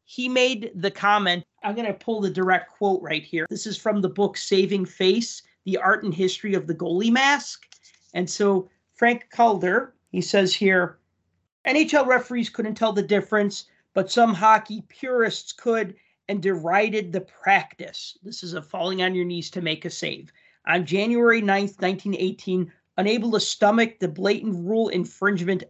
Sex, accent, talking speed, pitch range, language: male, American, 170 wpm, 180-215 Hz, English